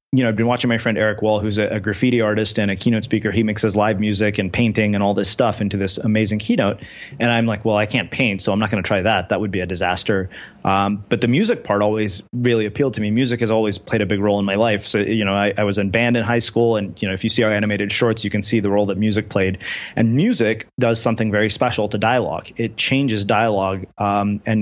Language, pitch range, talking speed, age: English, 105-115 Hz, 270 wpm, 30-49